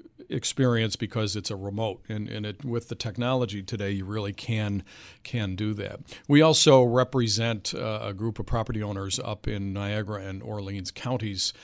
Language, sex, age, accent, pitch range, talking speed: English, male, 50-69, American, 100-115 Hz, 165 wpm